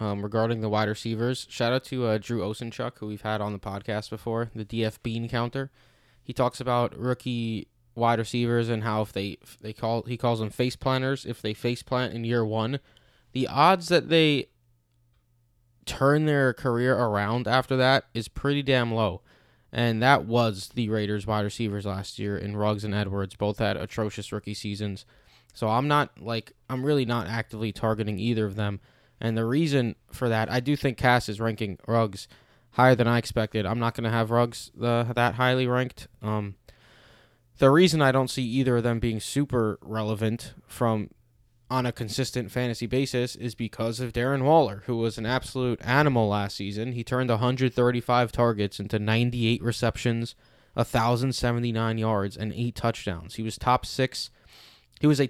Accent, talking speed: American, 180 wpm